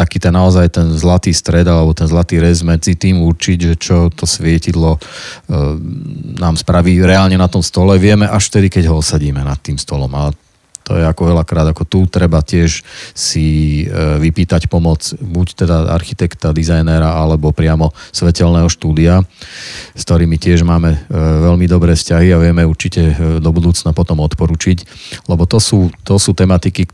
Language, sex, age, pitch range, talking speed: Slovak, male, 40-59, 80-90 Hz, 165 wpm